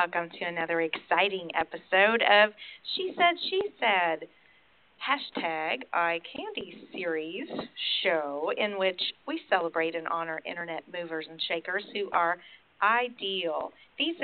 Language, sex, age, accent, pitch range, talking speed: English, female, 40-59, American, 175-235 Hz, 120 wpm